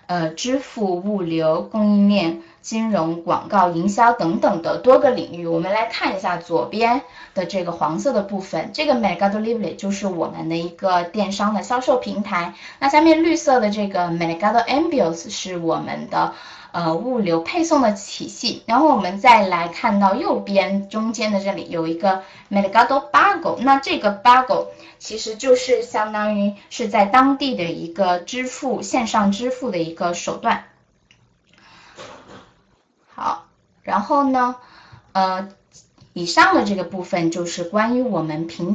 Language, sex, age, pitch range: Chinese, female, 10-29, 175-240 Hz